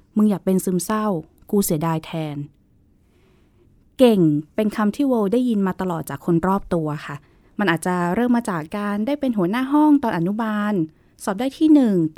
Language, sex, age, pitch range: Thai, female, 20-39, 175-230 Hz